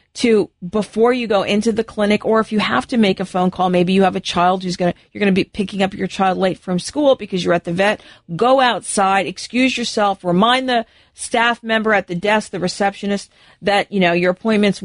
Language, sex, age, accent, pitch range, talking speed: English, female, 40-59, American, 185-220 Hz, 225 wpm